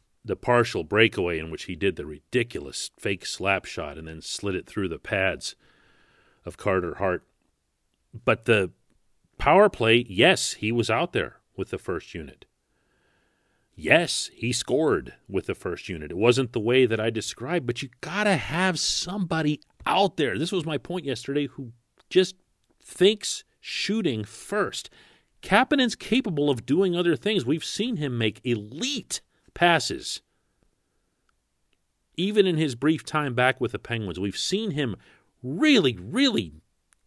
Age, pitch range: 40-59, 115-180 Hz